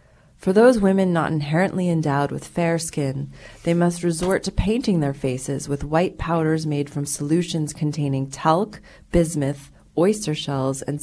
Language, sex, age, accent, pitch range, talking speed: English, female, 30-49, American, 140-170 Hz, 150 wpm